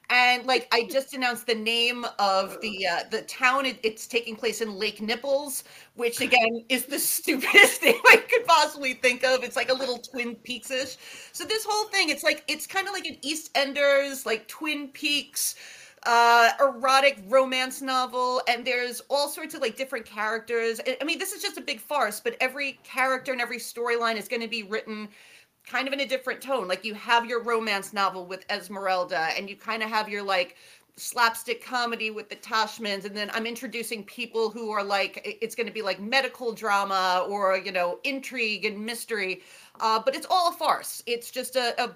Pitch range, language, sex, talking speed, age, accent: 215-265 Hz, English, female, 200 wpm, 30-49, American